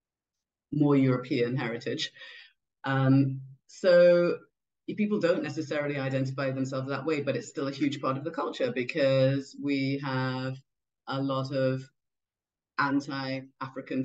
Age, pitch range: 30-49, 130-150 Hz